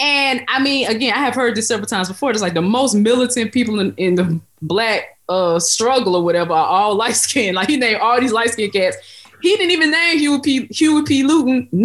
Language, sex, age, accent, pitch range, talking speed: English, female, 20-39, American, 170-245 Hz, 220 wpm